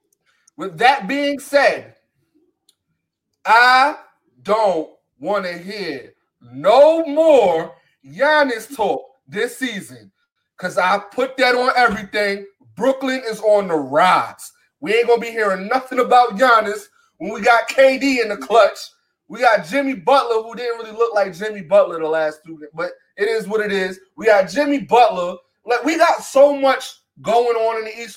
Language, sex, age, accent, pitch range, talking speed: English, male, 30-49, American, 195-265 Hz, 160 wpm